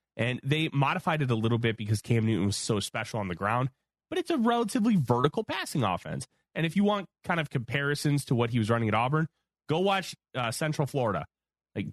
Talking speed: 215 wpm